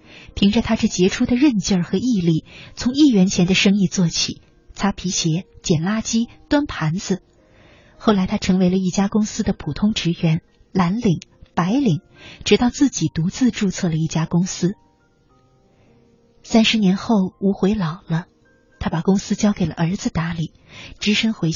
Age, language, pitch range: 30-49, Chinese, 165-220 Hz